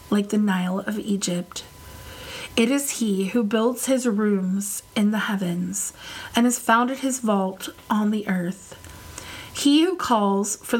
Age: 30-49